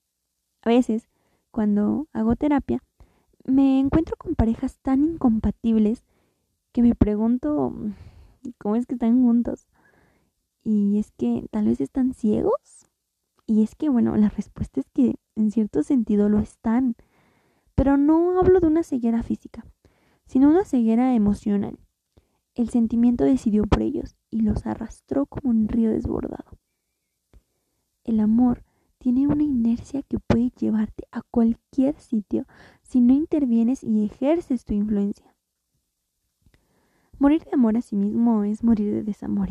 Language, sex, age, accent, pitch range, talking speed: Spanish, female, 20-39, Mexican, 210-255 Hz, 135 wpm